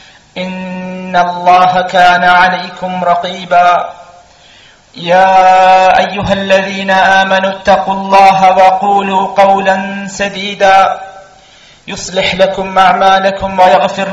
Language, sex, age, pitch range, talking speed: Malayalam, male, 50-69, 180-195 Hz, 75 wpm